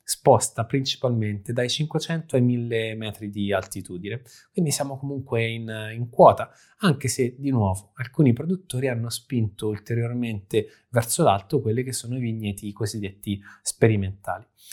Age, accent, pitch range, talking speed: 20-39, native, 110-135 Hz, 135 wpm